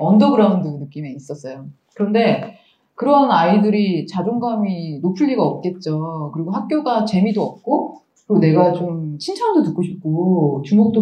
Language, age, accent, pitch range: Korean, 20-39, native, 165-235 Hz